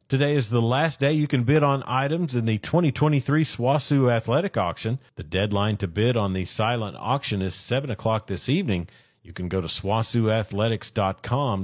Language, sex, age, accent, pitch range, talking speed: English, male, 40-59, American, 100-135 Hz, 175 wpm